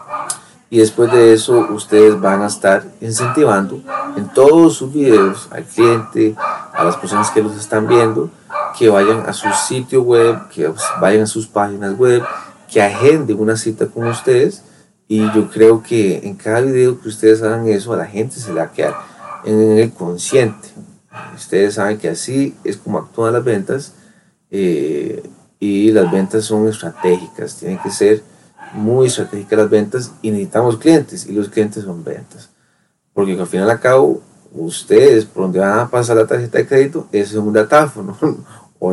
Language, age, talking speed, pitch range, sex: Spanish, 30-49, 170 wpm, 105-125 Hz, male